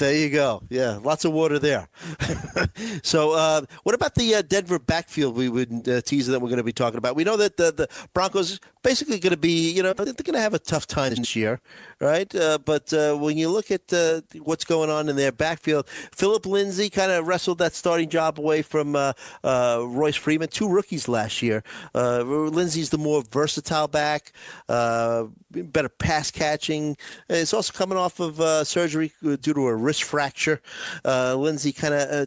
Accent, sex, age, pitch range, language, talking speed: American, male, 50-69, 135-160 Hz, English, 205 wpm